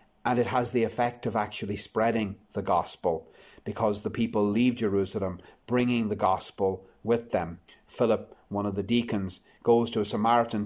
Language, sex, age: English, male, 30-49